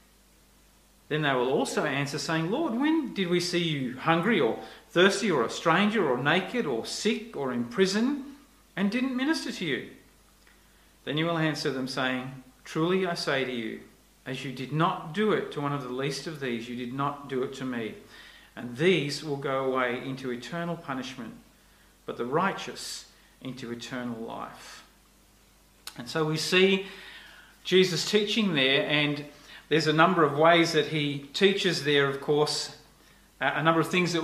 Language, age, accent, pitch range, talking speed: English, 40-59, Australian, 140-190 Hz, 175 wpm